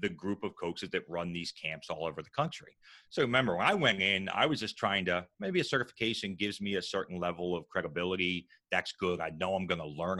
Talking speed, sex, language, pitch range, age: 240 wpm, male, English, 85-105 Hz, 30-49